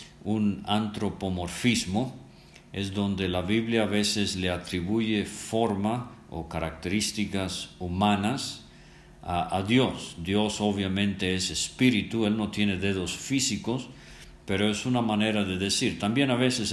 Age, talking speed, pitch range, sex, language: 50-69, 125 wpm, 85-105 Hz, male, English